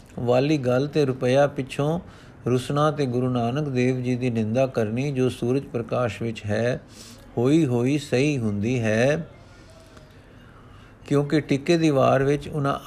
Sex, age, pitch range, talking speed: male, 50-69, 115-140 Hz, 135 wpm